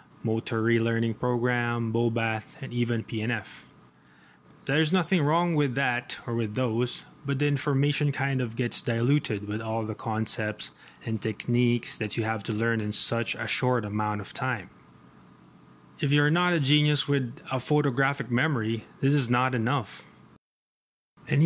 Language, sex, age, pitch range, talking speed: English, male, 20-39, 110-140 Hz, 150 wpm